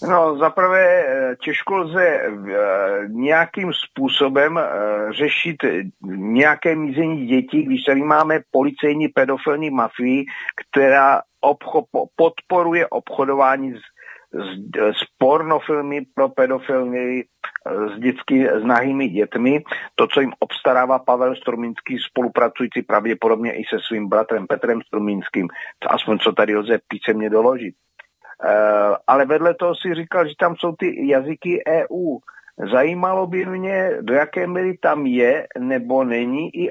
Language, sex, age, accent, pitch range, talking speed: Czech, male, 50-69, native, 125-170 Hz, 120 wpm